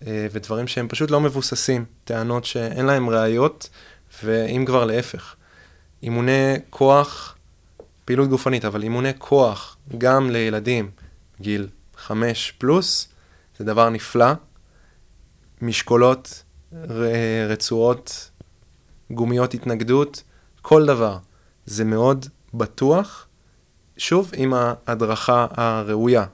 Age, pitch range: 20-39, 110-130 Hz